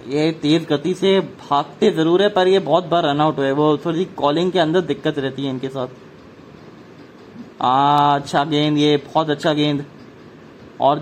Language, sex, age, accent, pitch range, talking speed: English, male, 20-39, Indian, 145-185 Hz, 165 wpm